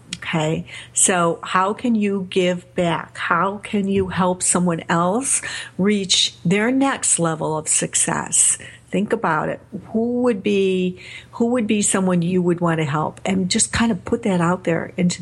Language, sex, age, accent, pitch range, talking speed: English, female, 50-69, American, 165-210 Hz, 170 wpm